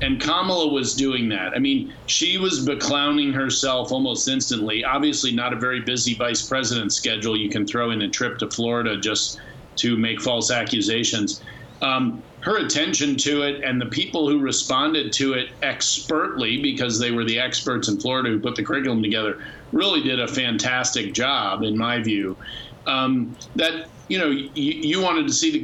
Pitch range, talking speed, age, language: 120-145 Hz, 180 wpm, 40-59, English